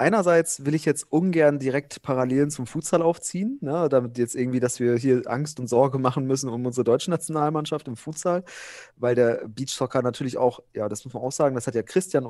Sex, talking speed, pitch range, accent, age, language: male, 210 wpm, 125-155 Hz, German, 30-49, German